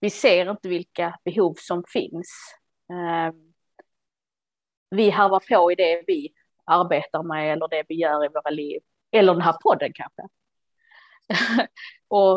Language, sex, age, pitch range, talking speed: Swedish, female, 30-49, 185-235 Hz, 145 wpm